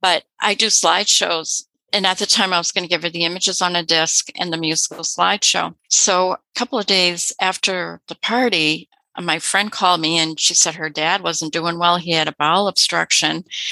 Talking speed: 210 wpm